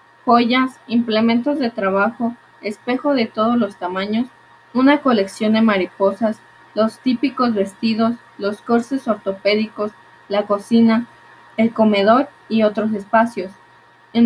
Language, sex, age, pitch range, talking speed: Spanish, female, 20-39, 205-245 Hz, 115 wpm